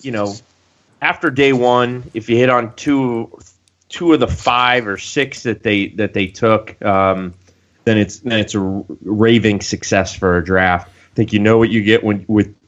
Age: 20-39